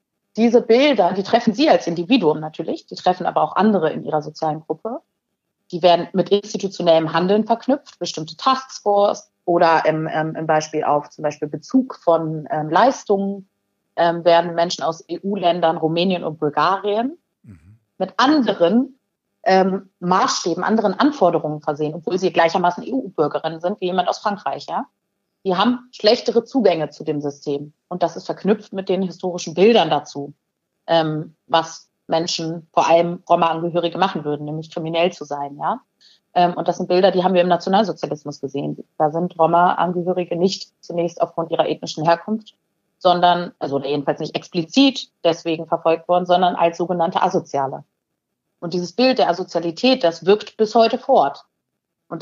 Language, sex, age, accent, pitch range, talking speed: German, female, 30-49, German, 160-195 Hz, 145 wpm